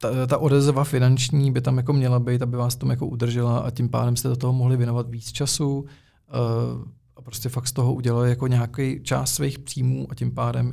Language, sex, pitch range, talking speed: Czech, male, 115-130 Hz, 215 wpm